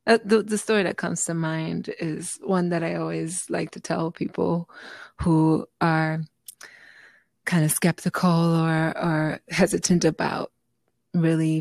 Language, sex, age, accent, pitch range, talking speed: English, female, 20-39, American, 160-180 Hz, 140 wpm